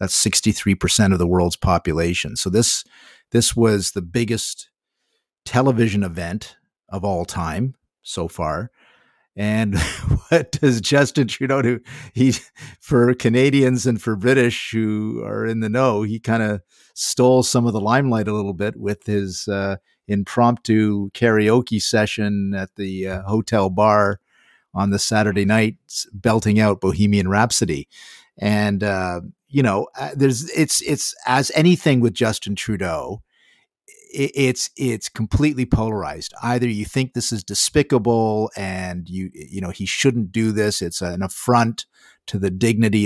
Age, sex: 50-69, male